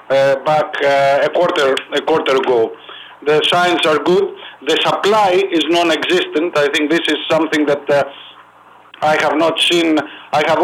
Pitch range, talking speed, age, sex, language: 150-180 Hz, 145 wpm, 50-69, male, English